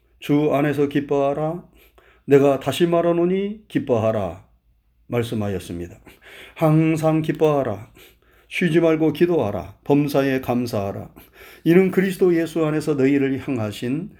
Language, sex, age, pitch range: Korean, male, 40-59, 115-170 Hz